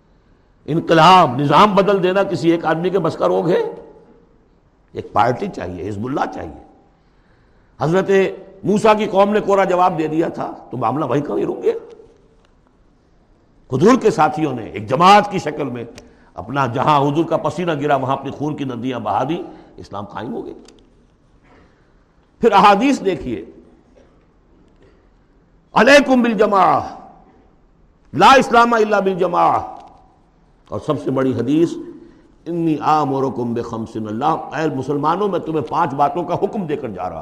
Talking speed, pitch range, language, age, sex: 135 wpm, 140-210 Hz, Urdu, 60-79, male